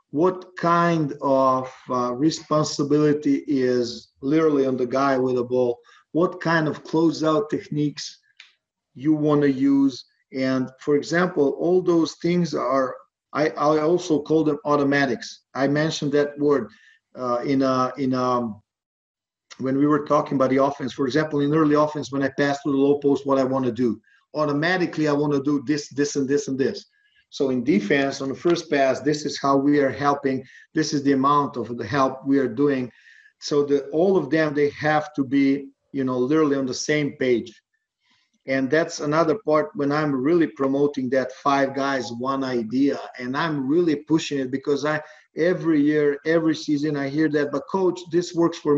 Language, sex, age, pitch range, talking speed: English, male, 40-59, 135-155 Hz, 185 wpm